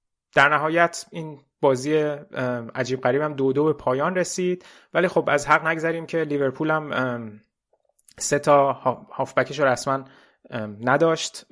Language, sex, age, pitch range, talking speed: Persian, male, 20-39, 115-135 Hz, 130 wpm